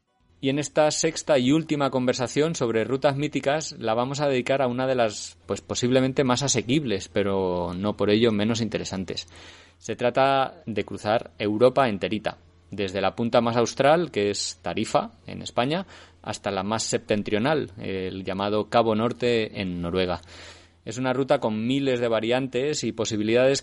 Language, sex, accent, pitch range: Spanish, male, Spanish, 100-120 Hz